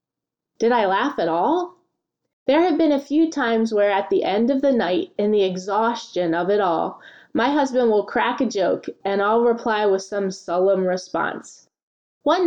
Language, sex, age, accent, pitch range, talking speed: English, female, 20-39, American, 185-260 Hz, 185 wpm